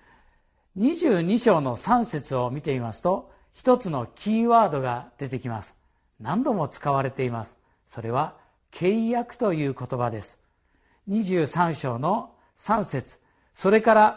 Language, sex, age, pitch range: Japanese, male, 50-69, 155-225 Hz